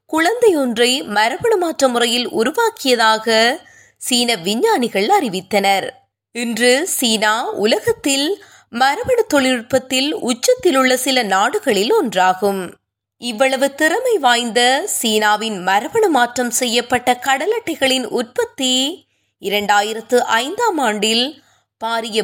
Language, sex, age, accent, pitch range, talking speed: Tamil, female, 20-39, native, 220-305 Hz, 80 wpm